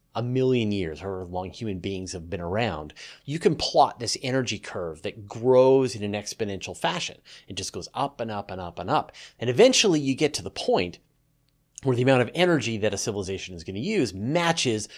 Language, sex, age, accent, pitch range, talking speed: English, male, 30-49, American, 100-130 Hz, 210 wpm